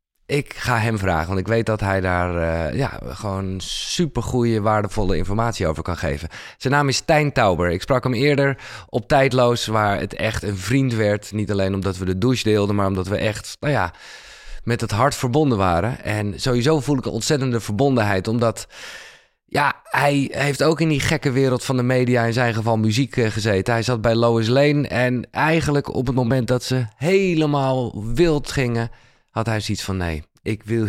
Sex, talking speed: male, 195 wpm